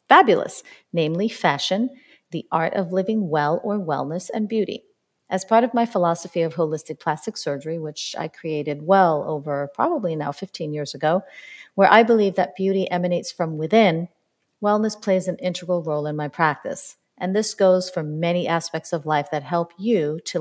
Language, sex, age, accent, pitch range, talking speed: English, female, 40-59, American, 160-215 Hz, 175 wpm